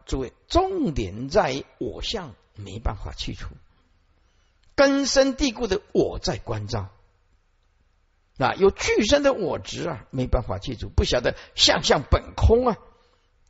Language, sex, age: Chinese, male, 50-69